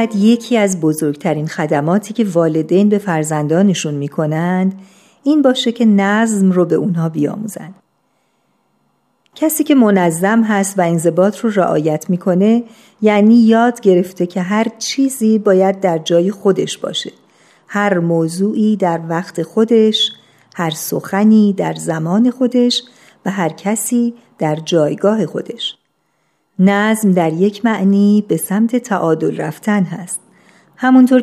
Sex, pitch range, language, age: female, 175-225 Hz, Persian, 50-69